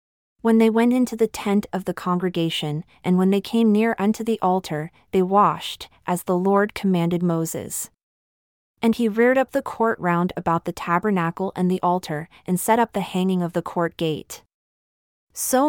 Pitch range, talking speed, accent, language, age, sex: 170-205 Hz, 180 wpm, American, English, 30-49, female